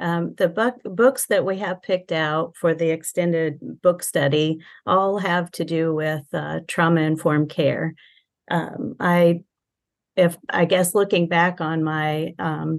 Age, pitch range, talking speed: 40-59, 155-175 Hz, 150 wpm